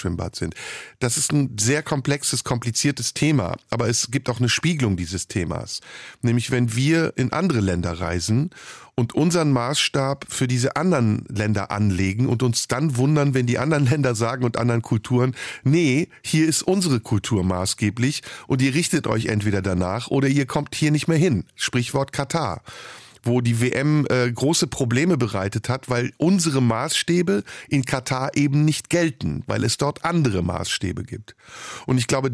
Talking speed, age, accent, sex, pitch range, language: 165 wpm, 50-69, German, male, 115-150 Hz, German